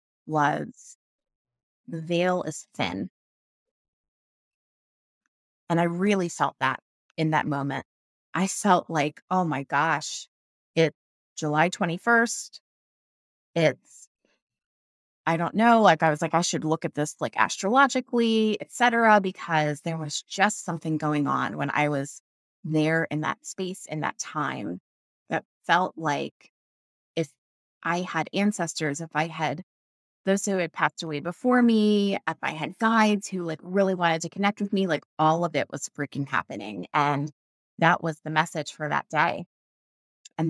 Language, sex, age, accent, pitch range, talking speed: English, female, 30-49, American, 145-185 Hz, 150 wpm